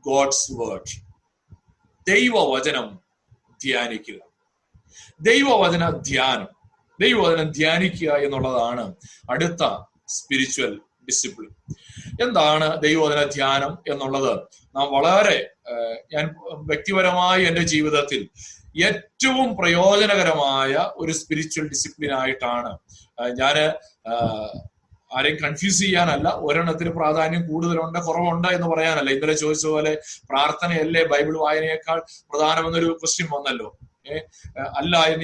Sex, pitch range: male, 140-175 Hz